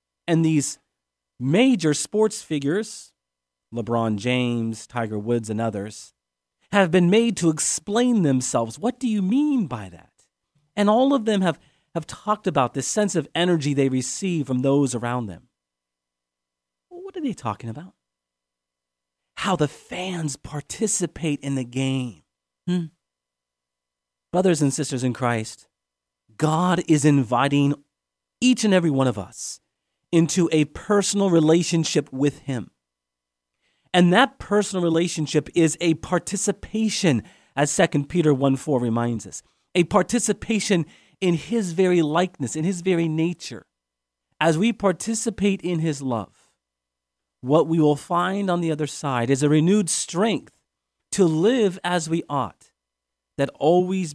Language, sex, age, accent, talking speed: English, male, 40-59, American, 135 wpm